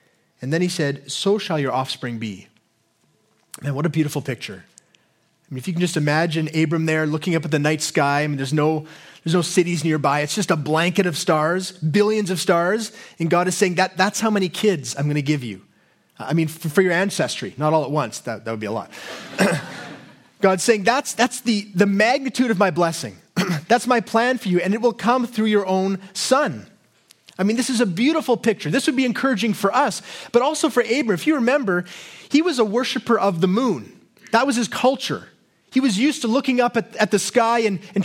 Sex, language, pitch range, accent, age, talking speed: male, English, 160-225 Hz, American, 30-49, 225 wpm